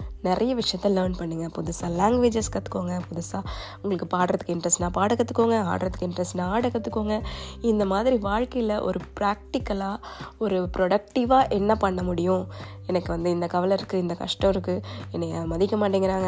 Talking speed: 135 wpm